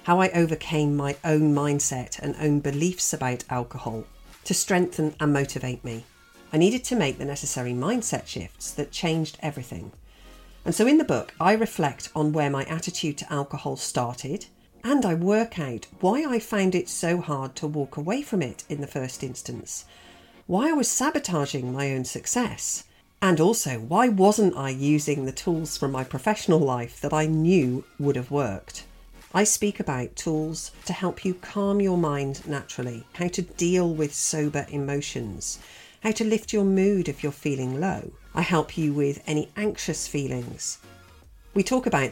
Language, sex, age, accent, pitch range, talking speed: English, female, 50-69, British, 135-180 Hz, 170 wpm